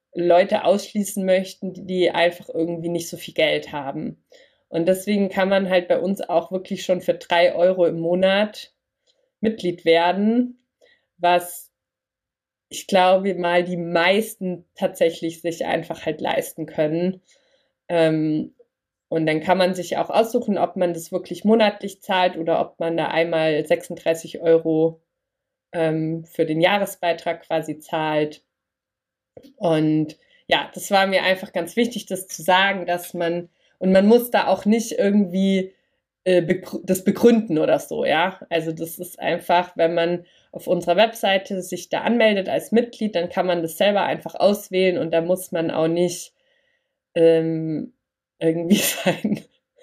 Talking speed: 145 wpm